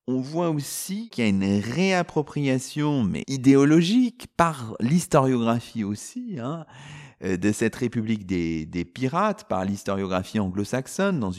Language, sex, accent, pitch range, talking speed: French, male, French, 105-140 Hz, 125 wpm